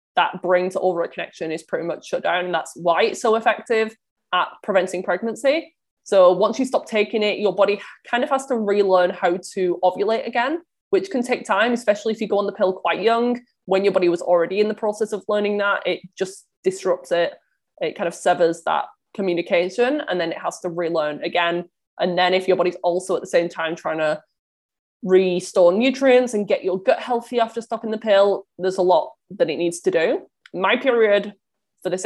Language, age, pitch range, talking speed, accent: English, 20-39, 180-230 Hz, 210 wpm, British